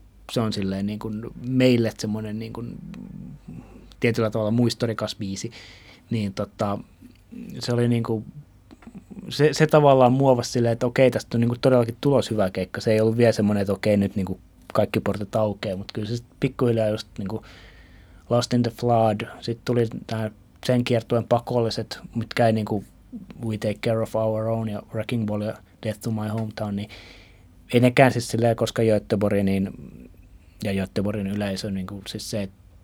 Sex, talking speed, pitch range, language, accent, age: male, 170 wpm, 95-120 Hz, Finnish, native, 20-39